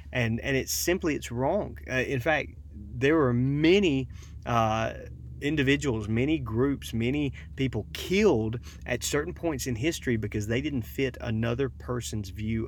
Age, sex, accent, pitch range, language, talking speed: 30-49, male, American, 100-130 Hz, English, 145 wpm